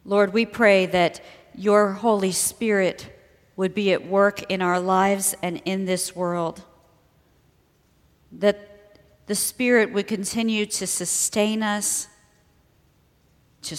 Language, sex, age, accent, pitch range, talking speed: English, female, 40-59, American, 175-210 Hz, 115 wpm